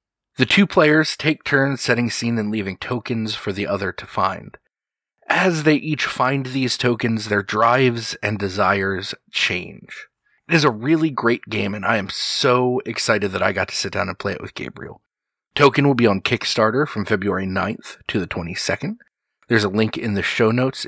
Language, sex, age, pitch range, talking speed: English, male, 30-49, 100-140 Hz, 190 wpm